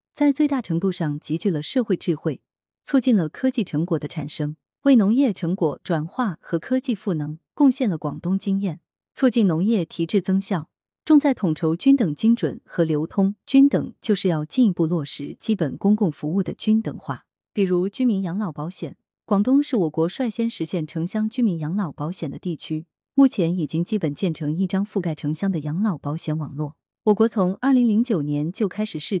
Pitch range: 160-220 Hz